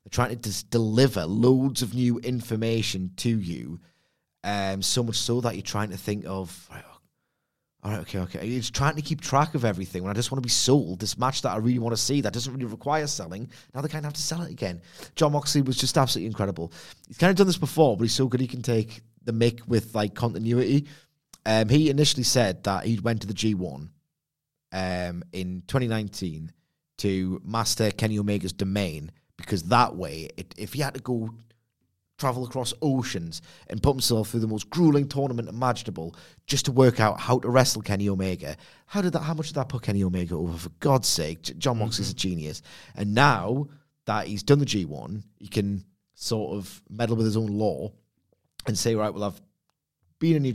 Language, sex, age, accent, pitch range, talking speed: English, male, 30-49, British, 100-135 Hz, 210 wpm